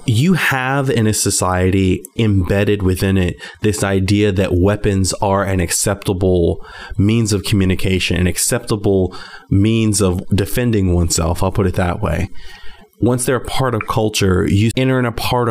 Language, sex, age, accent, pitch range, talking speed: English, male, 20-39, American, 95-110 Hz, 155 wpm